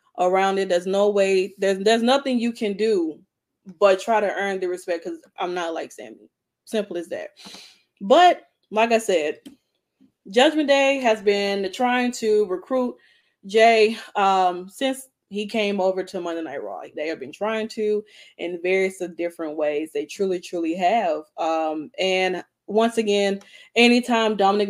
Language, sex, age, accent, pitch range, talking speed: English, female, 20-39, American, 180-225 Hz, 160 wpm